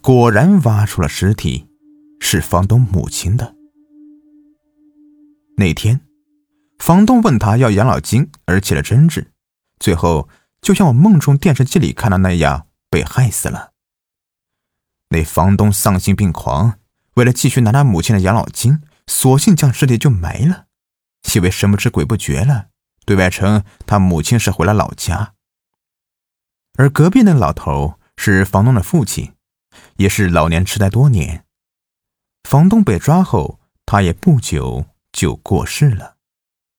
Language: Chinese